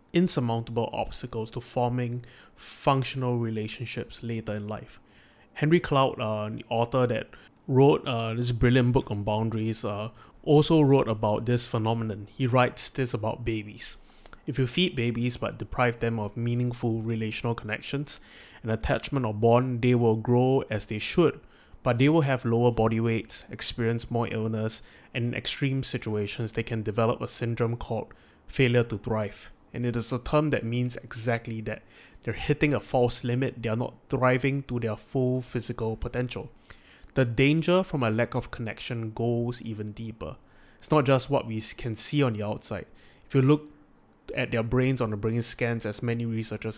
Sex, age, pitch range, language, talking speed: male, 20-39, 110-125 Hz, English, 170 wpm